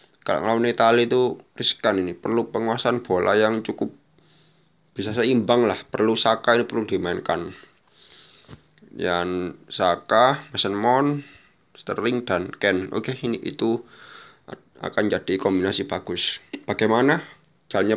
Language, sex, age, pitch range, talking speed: Indonesian, male, 20-39, 95-120 Hz, 115 wpm